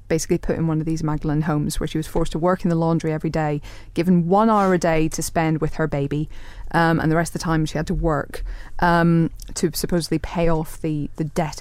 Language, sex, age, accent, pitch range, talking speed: English, female, 30-49, British, 155-185 Hz, 250 wpm